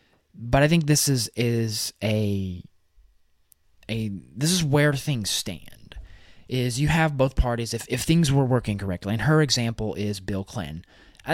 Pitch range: 95-130 Hz